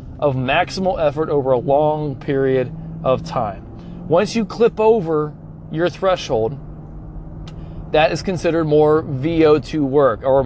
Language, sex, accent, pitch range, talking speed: English, male, American, 130-175 Hz, 125 wpm